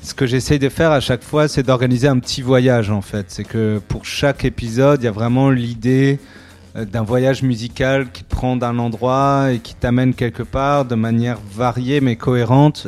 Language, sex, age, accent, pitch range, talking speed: French, male, 30-49, French, 115-135 Hz, 200 wpm